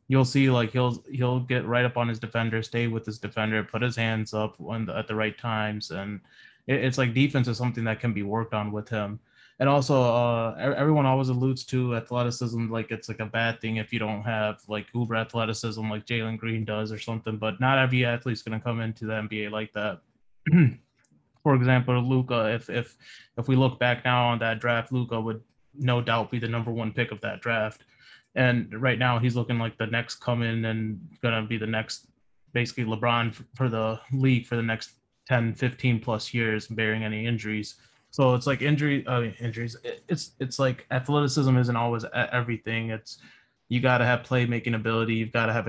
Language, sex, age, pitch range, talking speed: English, male, 20-39, 110-125 Hz, 205 wpm